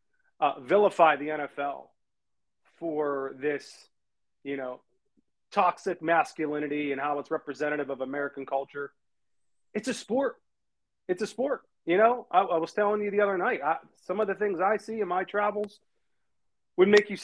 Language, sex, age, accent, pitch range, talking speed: English, male, 30-49, American, 140-200 Hz, 160 wpm